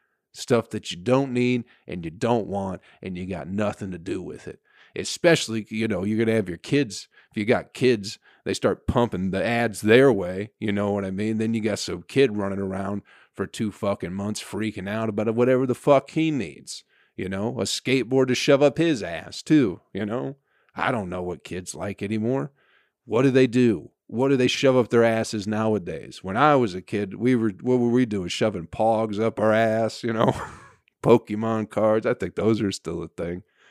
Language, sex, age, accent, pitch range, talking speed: English, male, 40-59, American, 100-130 Hz, 210 wpm